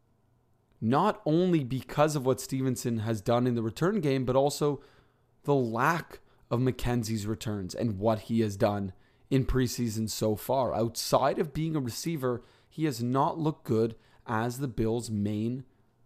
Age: 20-39